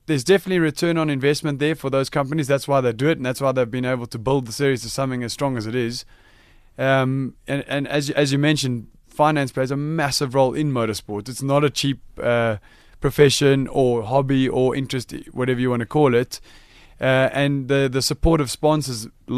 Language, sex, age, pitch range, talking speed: English, male, 20-39, 120-145 Hz, 210 wpm